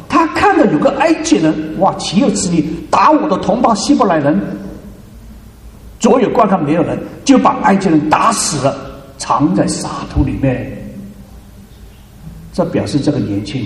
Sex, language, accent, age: male, Chinese, native, 50-69